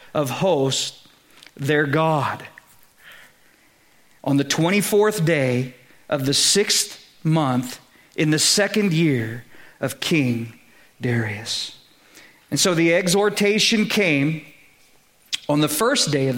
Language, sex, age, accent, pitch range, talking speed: English, male, 50-69, American, 145-190 Hz, 105 wpm